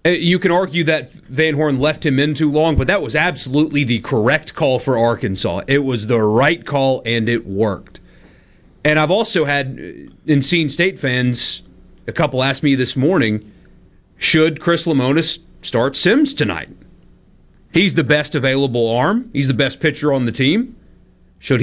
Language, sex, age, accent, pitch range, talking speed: English, male, 30-49, American, 115-160 Hz, 170 wpm